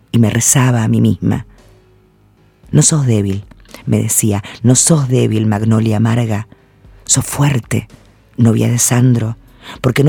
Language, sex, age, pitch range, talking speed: Spanish, female, 40-59, 115-150 Hz, 135 wpm